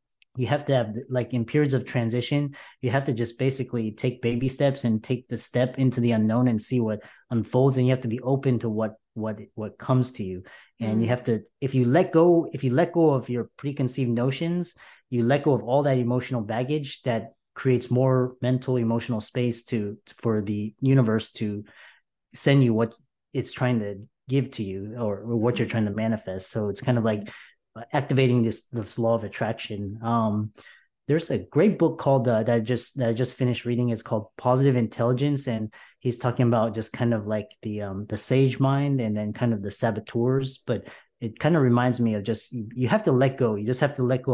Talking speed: 220 wpm